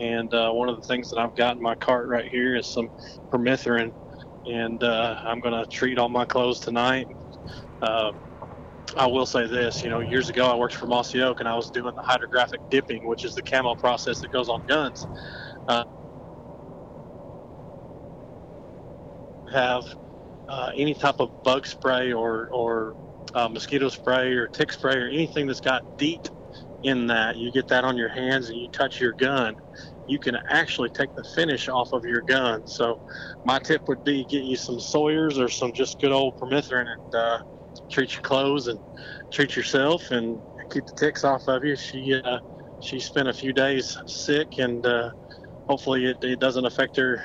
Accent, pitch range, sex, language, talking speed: American, 120-135 Hz, male, English, 185 wpm